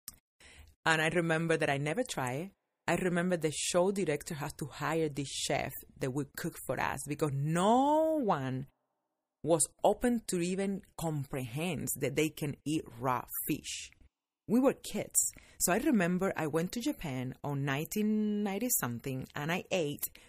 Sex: female